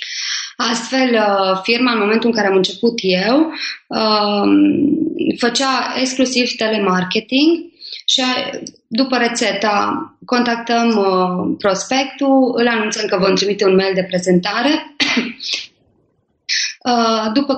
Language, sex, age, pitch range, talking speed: Romanian, female, 20-39, 195-260 Hz, 90 wpm